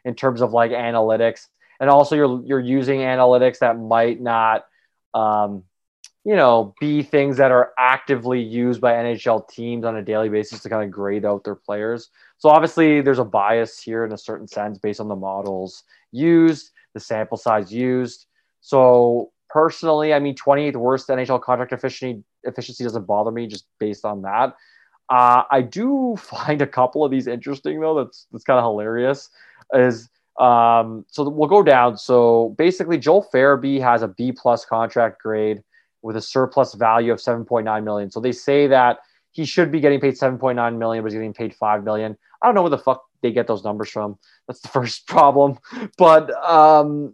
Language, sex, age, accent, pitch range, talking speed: English, male, 20-39, American, 115-140 Hz, 185 wpm